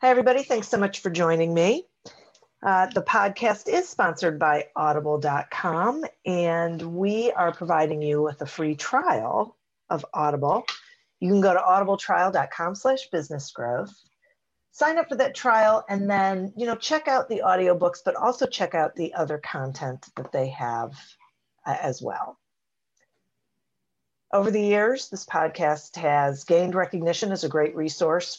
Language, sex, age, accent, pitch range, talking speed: English, female, 50-69, American, 150-205 Hz, 145 wpm